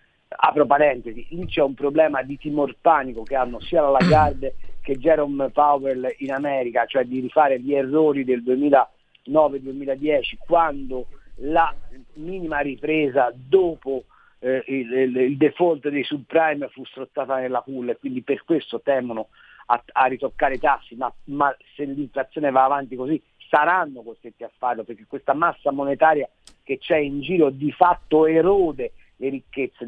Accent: native